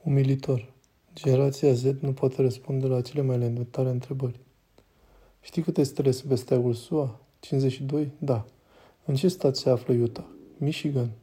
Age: 20-39